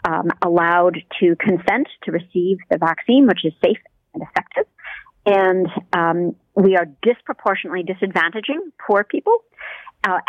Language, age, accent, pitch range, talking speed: English, 50-69, American, 175-205 Hz, 130 wpm